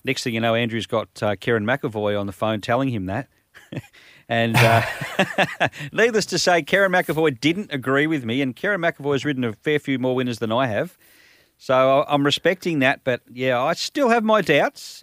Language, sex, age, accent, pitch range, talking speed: English, male, 40-59, Australian, 110-140 Hz, 195 wpm